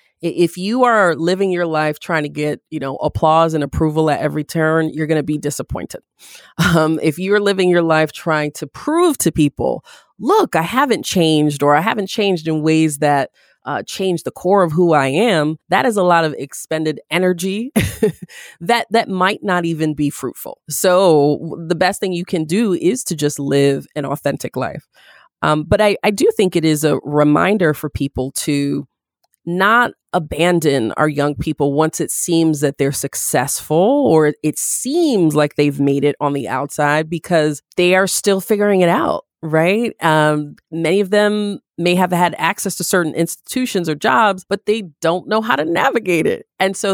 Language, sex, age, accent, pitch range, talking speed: English, female, 30-49, American, 150-190 Hz, 185 wpm